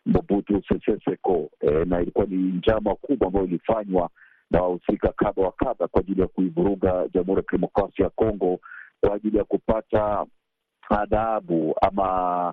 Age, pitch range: 50-69, 95-110 Hz